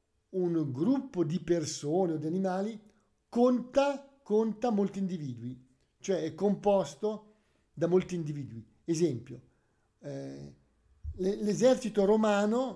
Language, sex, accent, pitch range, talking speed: Italian, male, native, 150-205 Hz, 100 wpm